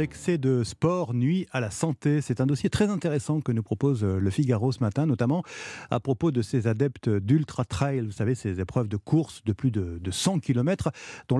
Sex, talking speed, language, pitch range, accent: male, 210 wpm, French, 120-165 Hz, French